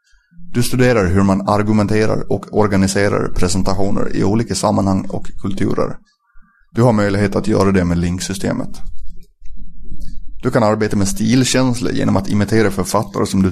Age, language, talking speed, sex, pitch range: 30-49, Swedish, 140 wpm, male, 95-120 Hz